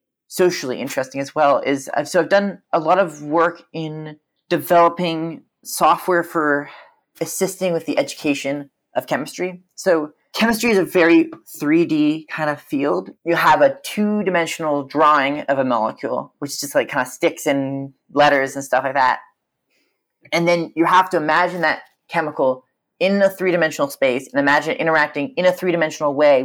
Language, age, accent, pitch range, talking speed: English, 30-49, American, 145-175 Hz, 170 wpm